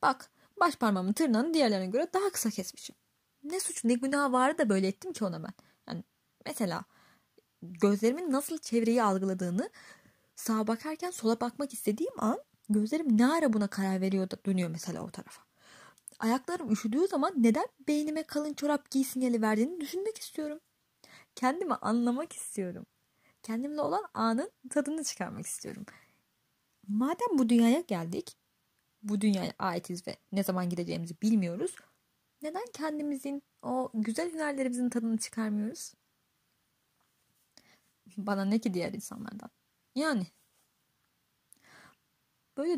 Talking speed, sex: 125 wpm, female